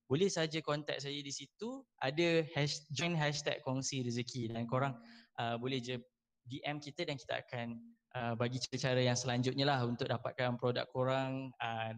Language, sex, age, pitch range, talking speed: Malay, male, 10-29, 125-145 Hz, 165 wpm